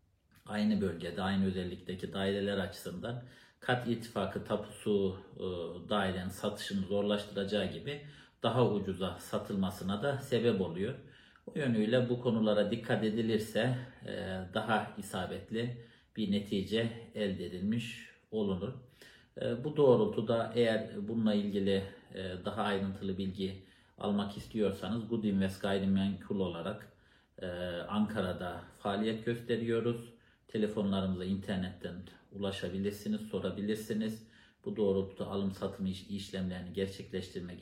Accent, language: native, Turkish